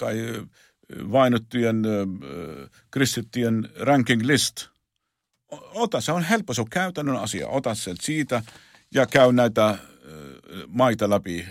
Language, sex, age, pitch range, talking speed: Finnish, male, 50-69, 90-120 Hz, 120 wpm